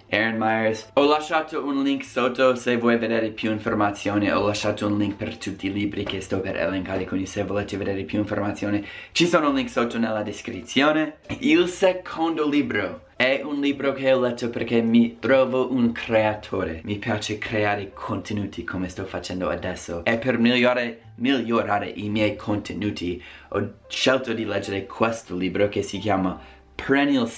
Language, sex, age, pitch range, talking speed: Italian, male, 20-39, 100-120 Hz, 165 wpm